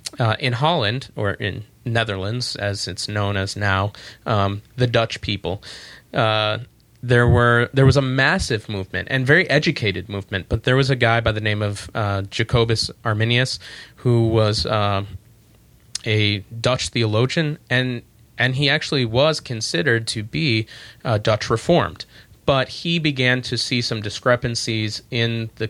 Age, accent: 30-49, American